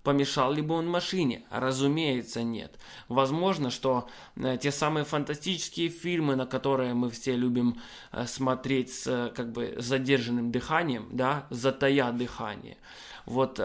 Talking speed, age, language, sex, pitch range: 125 wpm, 20-39, Russian, male, 125-150 Hz